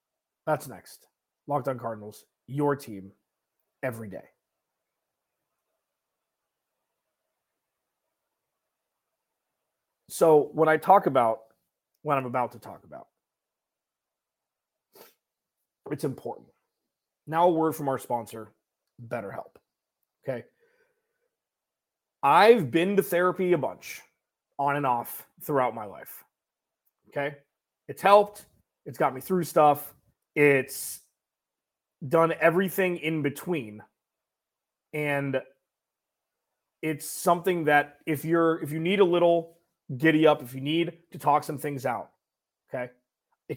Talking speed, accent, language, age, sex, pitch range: 110 wpm, American, English, 30-49, male, 135-170 Hz